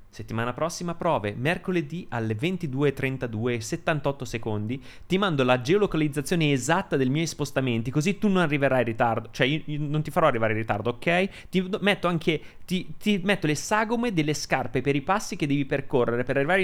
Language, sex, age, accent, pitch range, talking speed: Italian, male, 30-49, native, 110-155 Hz, 175 wpm